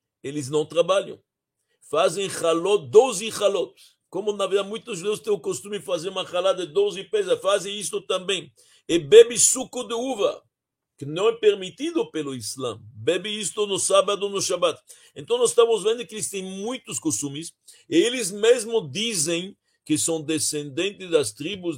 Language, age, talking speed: Portuguese, 60-79, 165 wpm